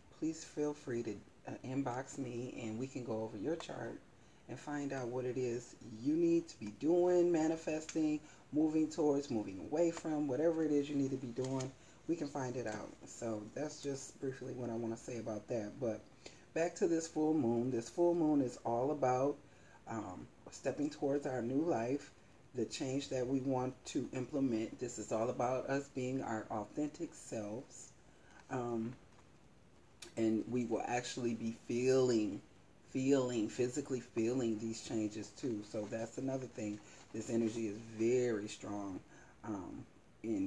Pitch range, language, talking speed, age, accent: 115-140 Hz, English, 165 wpm, 30-49, American